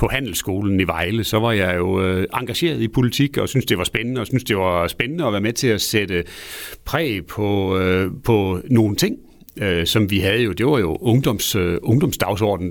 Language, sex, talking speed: Danish, male, 210 wpm